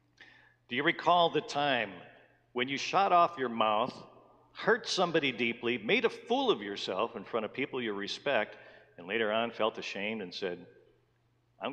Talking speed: 170 wpm